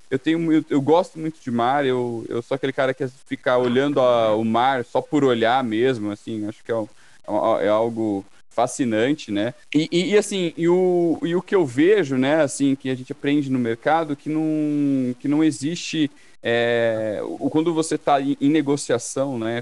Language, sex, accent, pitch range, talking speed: Portuguese, male, Brazilian, 115-140 Hz, 200 wpm